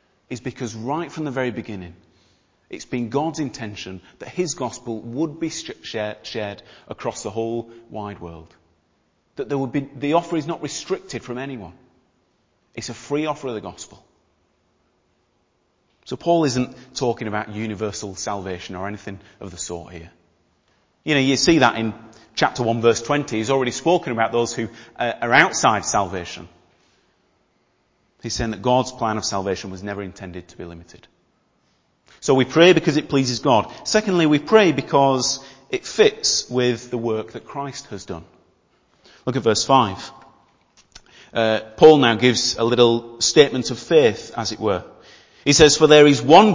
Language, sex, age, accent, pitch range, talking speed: English, male, 30-49, British, 105-135 Hz, 160 wpm